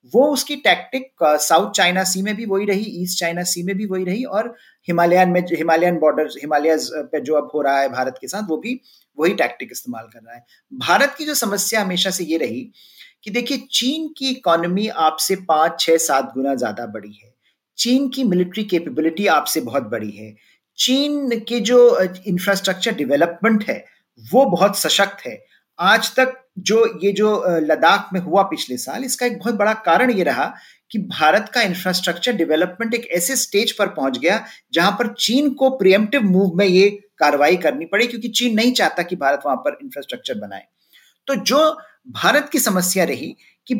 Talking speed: 185 wpm